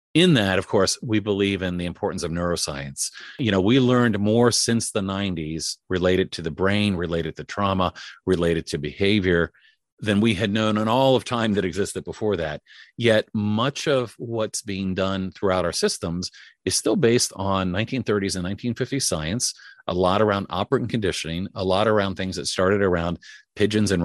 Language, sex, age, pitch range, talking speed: English, male, 40-59, 90-110 Hz, 180 wpm